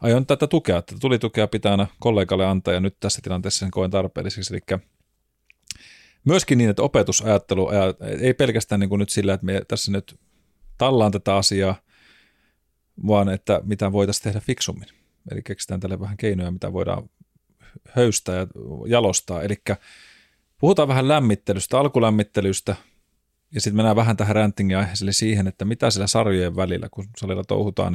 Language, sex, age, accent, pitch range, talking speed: Finnish, male, 30-49, native, 95-115 Hz, 150 wpm